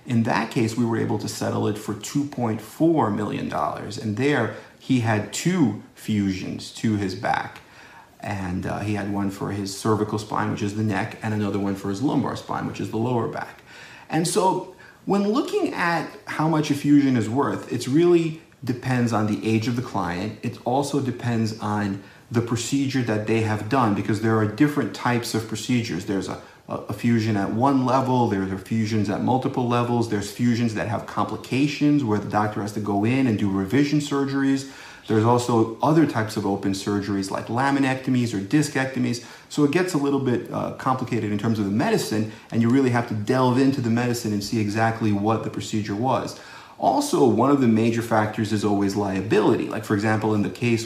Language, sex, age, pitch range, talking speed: English, male, 40-59, 105-130 Hz, 195 wpm